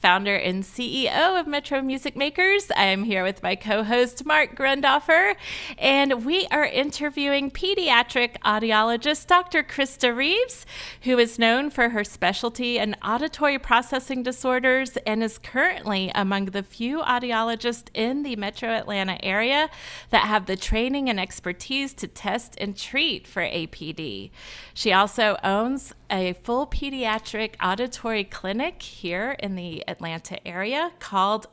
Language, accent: English, American